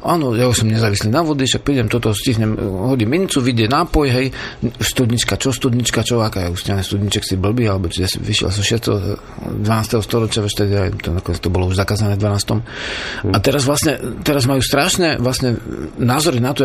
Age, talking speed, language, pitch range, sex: 40-59, 175 wpm, Slovak, 110-135 Hz, male